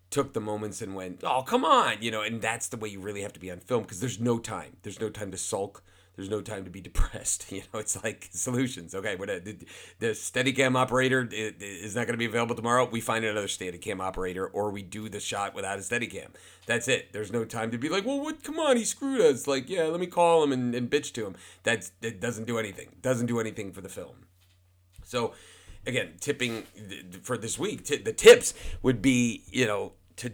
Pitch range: 90-120 Hz